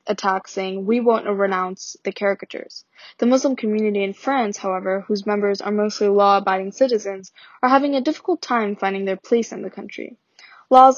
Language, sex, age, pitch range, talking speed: English, female, 10-29, 195-225 Hz, 170 wpm